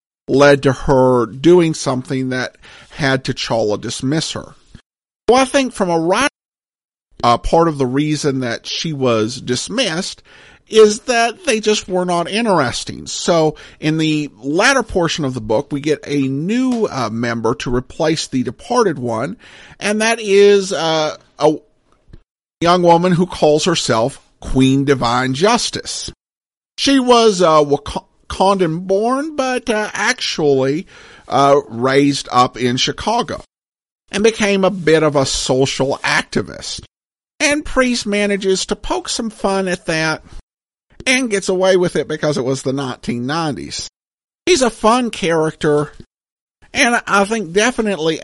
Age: 50-69